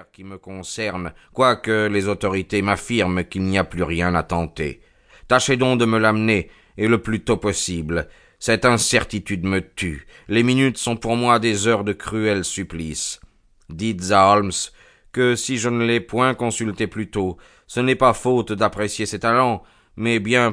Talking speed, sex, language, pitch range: 170 wpm, male, French, 90-115 Hz